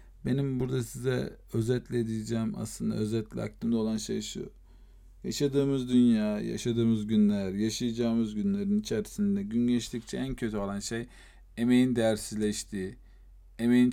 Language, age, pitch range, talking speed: Turkish, 40-59, 110-140 Hz, 115 wpm